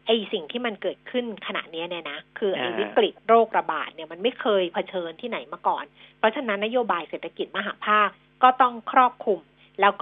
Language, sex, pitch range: Thai, female, 200-255 Hz